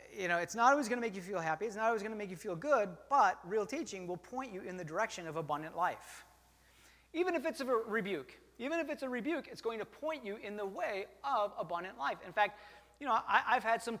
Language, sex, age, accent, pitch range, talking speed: English, male, 30-49, American, 195-265 Hz, 260 wpm